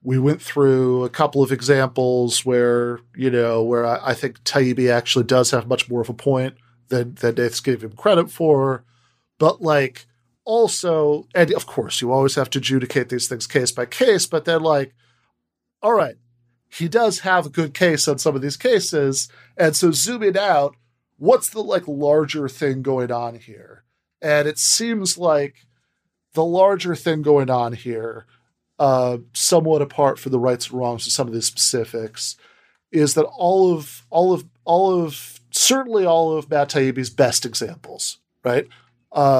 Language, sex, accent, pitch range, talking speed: English, male, American, 120-155 Hz, 170 wpm